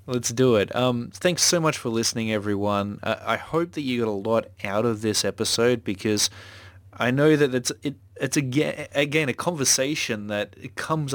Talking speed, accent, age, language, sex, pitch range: 190 wpm, Australian, 20-39, English, male, 95-120 Hz